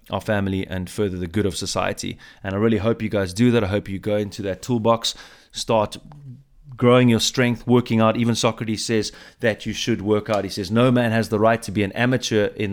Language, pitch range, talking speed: English, 100-120 Hz, 230 wpm